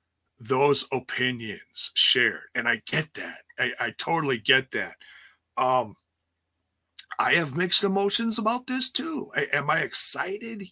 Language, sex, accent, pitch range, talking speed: English, male, American, 115-180 Hz, 130 wpm